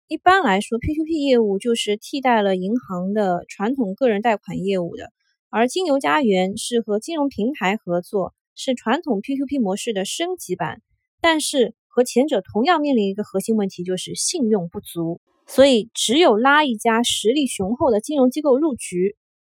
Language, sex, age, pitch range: Chinese, female, 20-39, 195-260 Hz